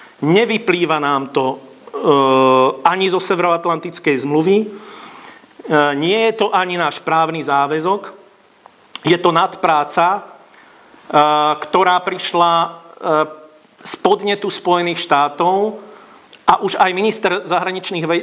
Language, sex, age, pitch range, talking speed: Slovak, male, 50-69, 170-195 Hz, 105 wpm